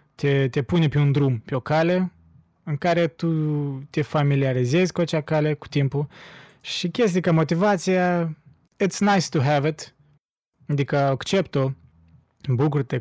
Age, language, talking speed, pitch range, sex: 20-39, Romanian, 145 wpm, 130-155 Hz, male